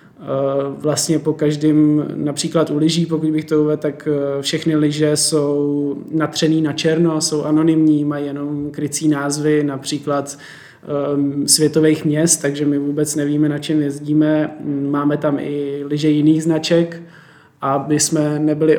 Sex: male